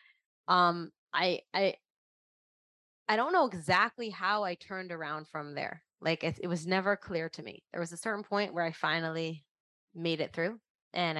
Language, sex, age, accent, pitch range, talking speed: English, female, 20-39, American, 155-190 Hz, 175 wpm